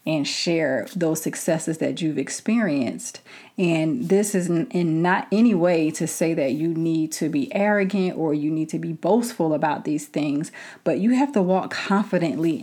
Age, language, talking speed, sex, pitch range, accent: 30-49, English, 175 wpm, female, 160-190 Hz, American